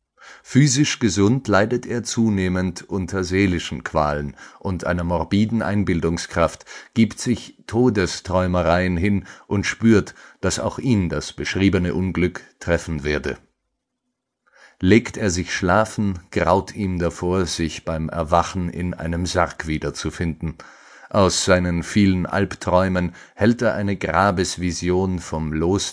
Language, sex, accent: German, male, German